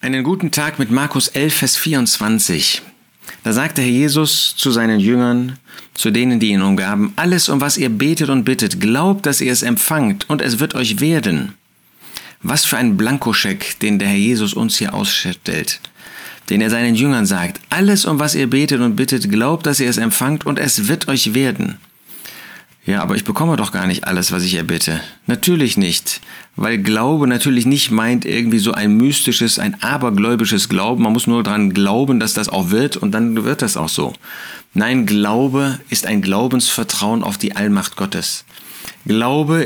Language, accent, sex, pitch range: German, German, male, 115-155 Hz